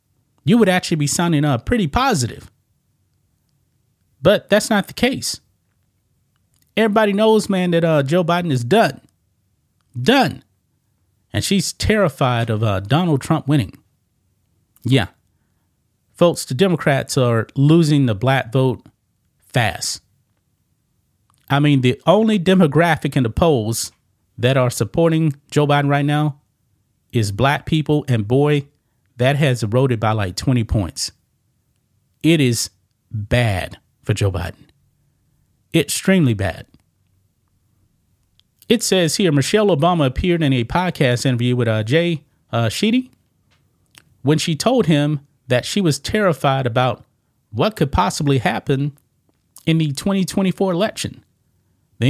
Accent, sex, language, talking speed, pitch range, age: American, male, English, 125 wpm, 115-165 Hz, 30-49